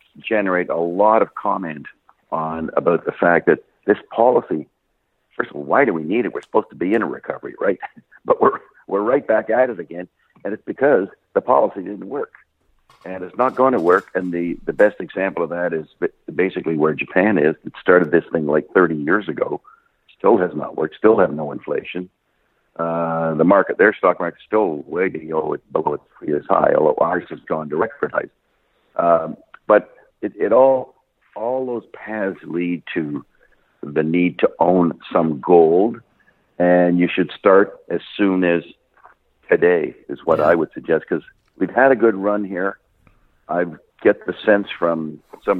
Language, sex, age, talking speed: English, male, 60-79, 185 wpm